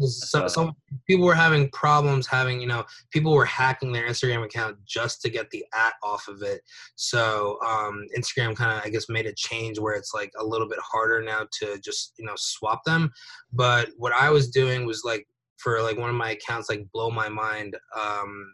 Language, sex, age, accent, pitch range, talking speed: English, male, 20-39, American, 110-135 Hz, 210 wpm